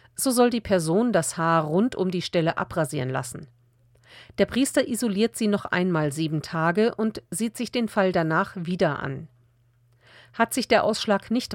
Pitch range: 150-220 Hz